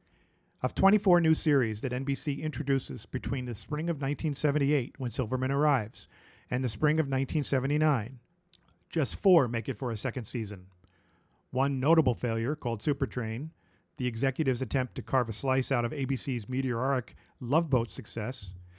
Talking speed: 150 wpm